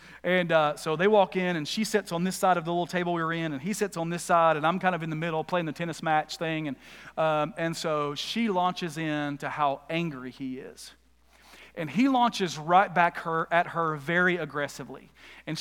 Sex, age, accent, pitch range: male, 40-59, American, 155-215 Hz